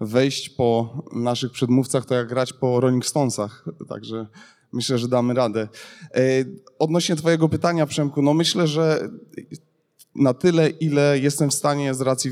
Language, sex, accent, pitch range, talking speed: Polish, male, native, 125-145 Hz, 145 wpm